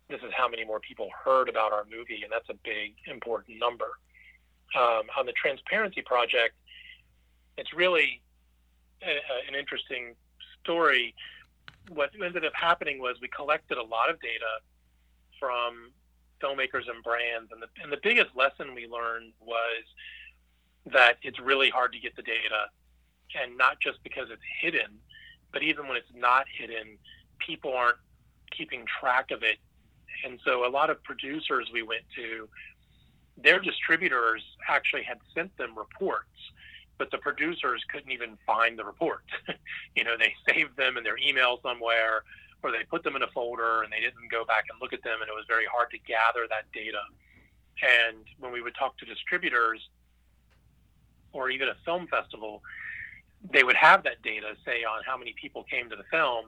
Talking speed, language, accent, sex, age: 170 wpm, English, American, male, 40-59